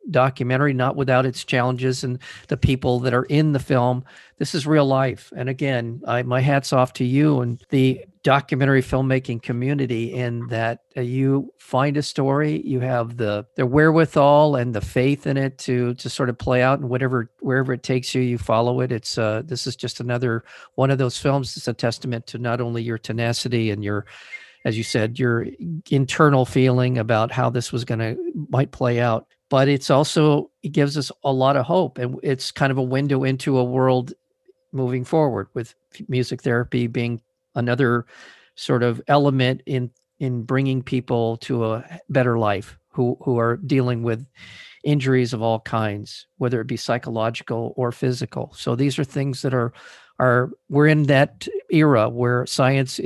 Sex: male